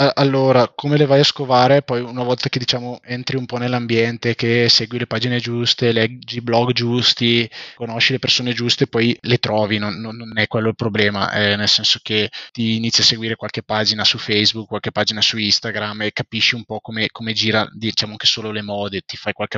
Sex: male